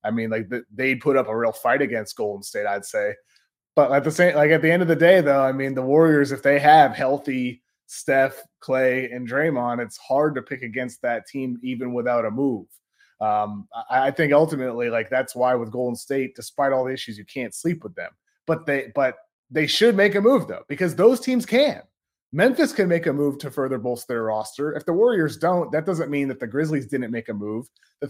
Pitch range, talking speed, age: 120-150 Hz, 225 wpm, 30-49